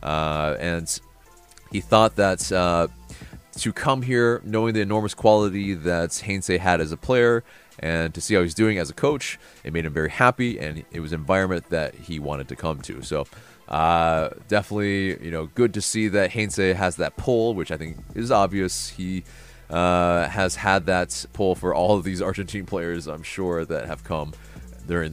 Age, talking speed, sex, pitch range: 30-49, 190 wpm, male, 80-105 Hz